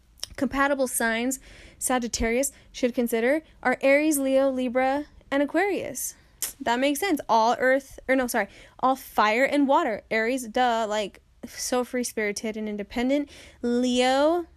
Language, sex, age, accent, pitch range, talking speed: English, female, 10-29, American, 215-265 Hz, 130 wpm